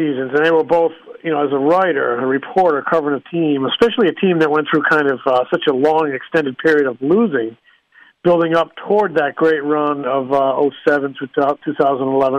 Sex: male